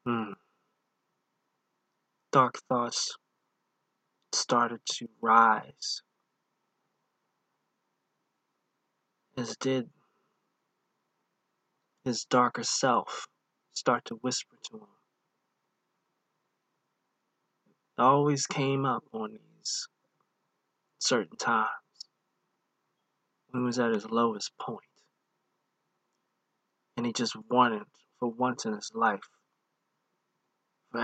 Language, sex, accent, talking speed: English, male, American, 75 wpm